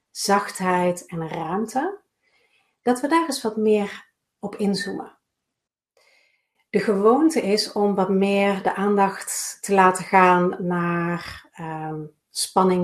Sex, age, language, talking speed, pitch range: female, 40-59, Dutch, 110 wpm, 180-215 Hz